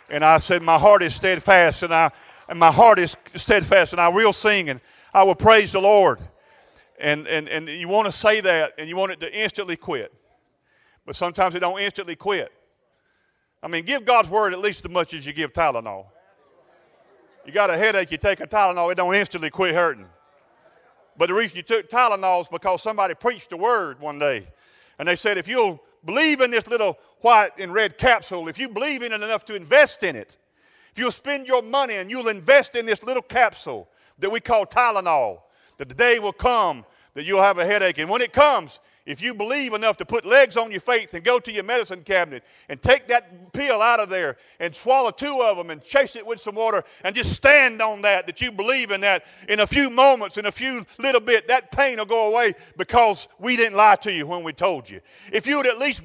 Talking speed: 225 wpm